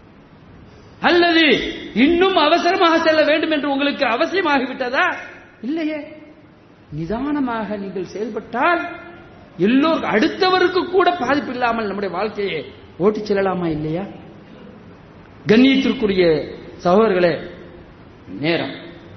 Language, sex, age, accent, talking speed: English, male, 50-69, Indian, 90 wpm